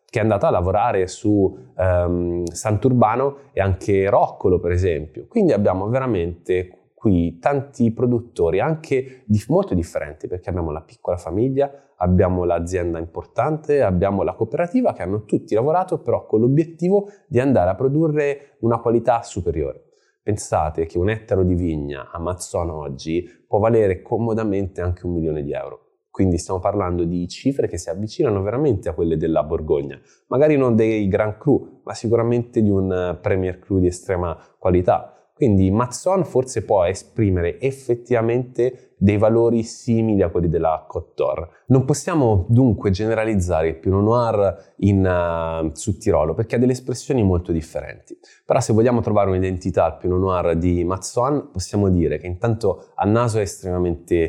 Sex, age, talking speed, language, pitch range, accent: male, 20-39, 155 wpm, Italian, 90-125 Hz, native